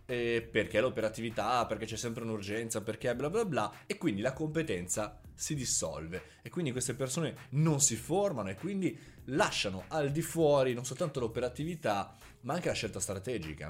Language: Italian